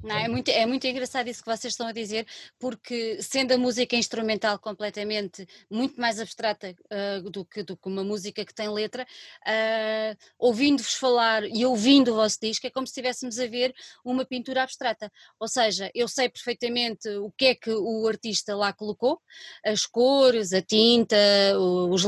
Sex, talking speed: female, 180 wpm